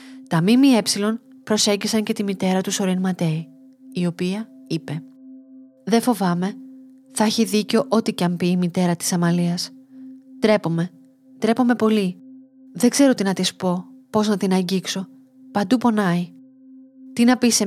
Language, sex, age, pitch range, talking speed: Greek, female, 30-49, 185-260 Hz, 145 wpm